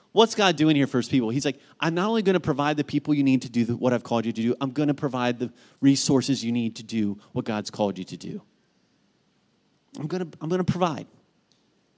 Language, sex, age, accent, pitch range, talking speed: English, male, 40-59, American, 125-145 Hz, 240 wpm